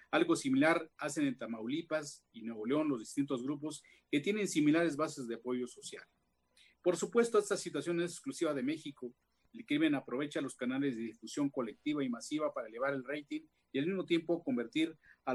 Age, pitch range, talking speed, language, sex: 40-59, 135-175 Hz, 180 wpm, Spanish, male